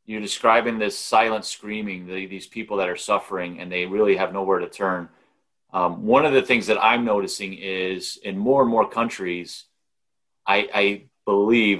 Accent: American